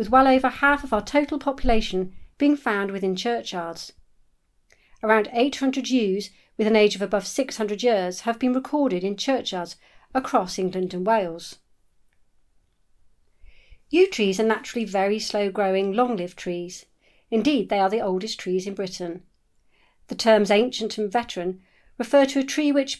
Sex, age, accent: female, 50-69, British